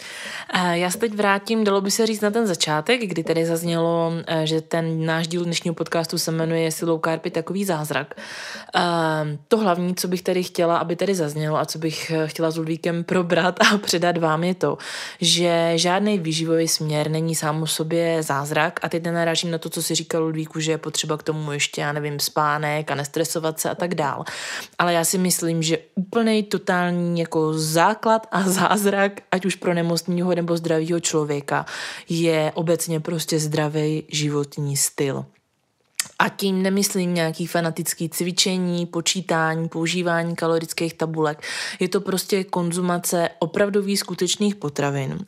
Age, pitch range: 20-39, 160-180 Hz